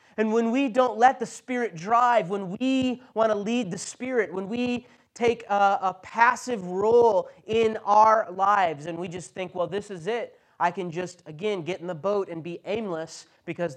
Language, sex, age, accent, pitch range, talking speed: English, male, 30-49, American, 165-225 Hz, 195 wpm